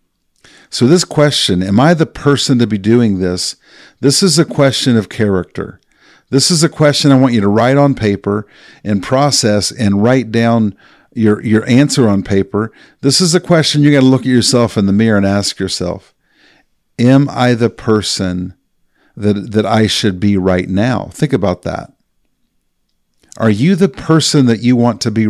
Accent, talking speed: American, 185 wpm